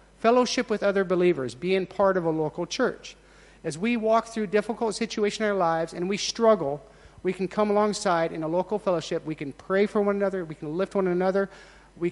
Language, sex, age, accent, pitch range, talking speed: English, male, 50-69, American, 175-220 Hz, 210 wpm